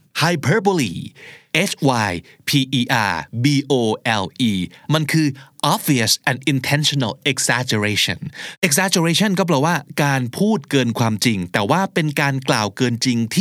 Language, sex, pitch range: Thai, male, 120-160 Hz